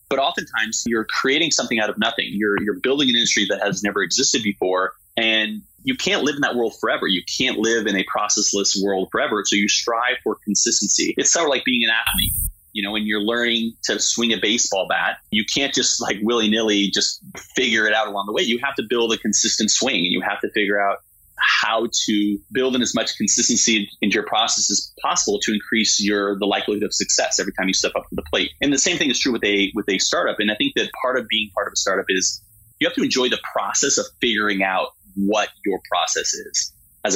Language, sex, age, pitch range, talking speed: English, male, 30-49, 100-115 Hz, 235 wpm